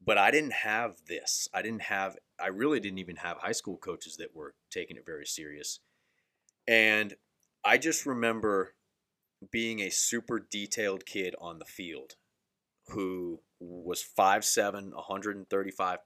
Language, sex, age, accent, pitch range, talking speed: English, male, 30-49, American, 95-110 Hz, 140 wpm